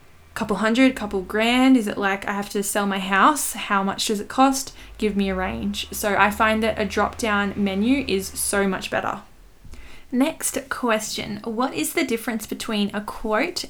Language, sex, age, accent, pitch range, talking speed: English, female, 10-29, Australian, 200-230 Hz, 190 wpm